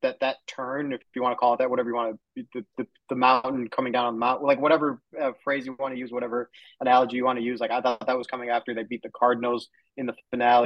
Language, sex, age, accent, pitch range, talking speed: English, male, 20-39, American, 120-135 Hz, 285 wpm